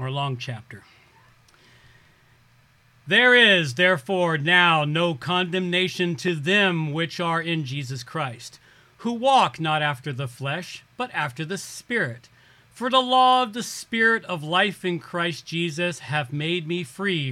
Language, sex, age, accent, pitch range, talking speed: English, male, 40-59, American, 140-190 Hz, 140 wpm